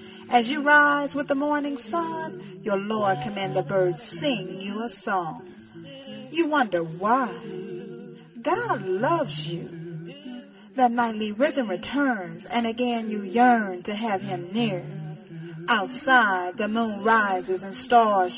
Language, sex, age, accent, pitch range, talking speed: English, female, 40-59, American, 180-245 Hz, 130 wpm